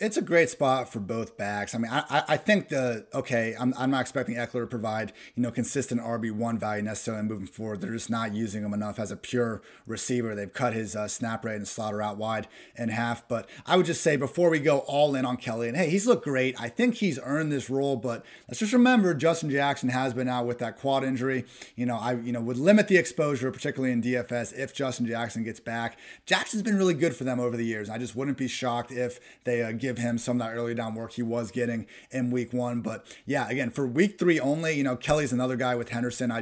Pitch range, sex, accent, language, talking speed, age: 115-135 Hz, male, American, English, 250 wpm, 30-49